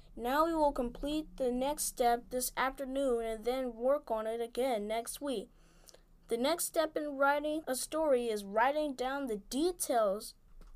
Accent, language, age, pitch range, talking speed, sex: American, English, 20-39, 235-285 Hz, 160 wpm, female